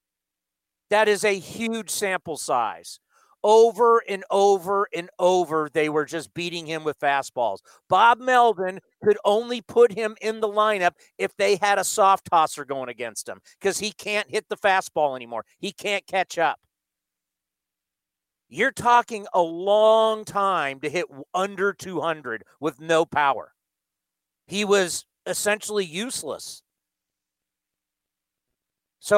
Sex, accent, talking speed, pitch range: male, American, 130 wpm, 155-220 Hz